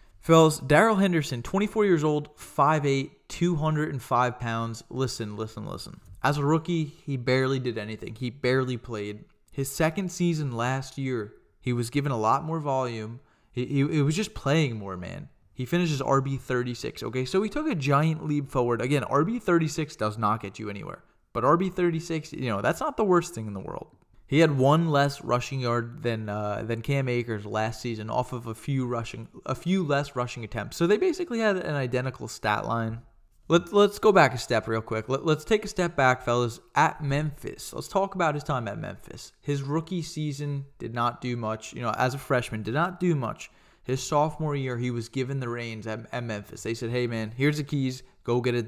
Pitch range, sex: 115-155 Hz, male